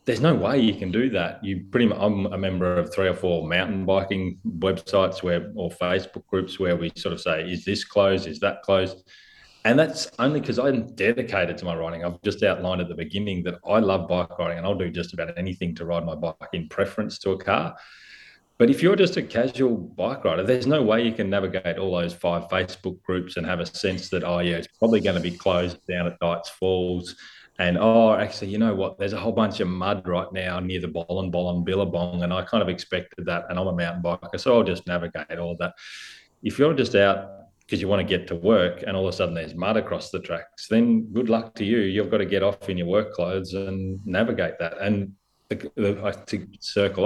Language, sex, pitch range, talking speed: English, male, 85-100 Hz, 235 wpm